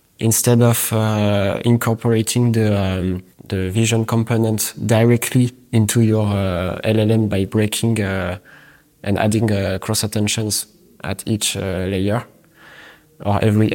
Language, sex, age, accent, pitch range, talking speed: English, male, 20-39, French, 105-120 Hz, 120 wpm